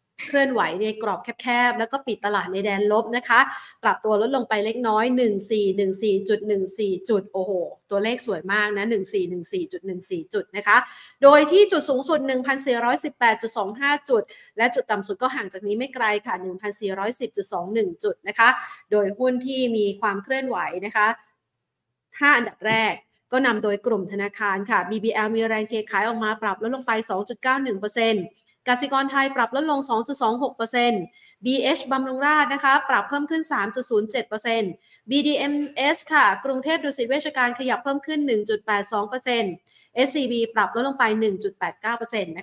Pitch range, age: 205-265 Hz, 30-49